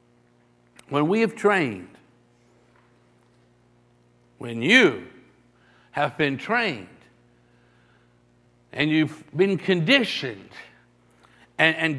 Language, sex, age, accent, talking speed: English, male, 60-79, American, 75 wpm